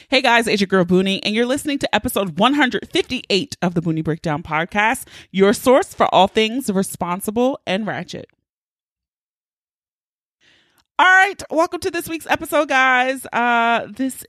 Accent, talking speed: American, 145 wpm